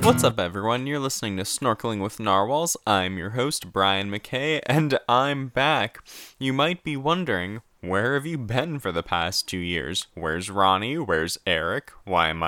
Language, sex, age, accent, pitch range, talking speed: English, male, 10-29, American, 90-115 Hz, 175 wpm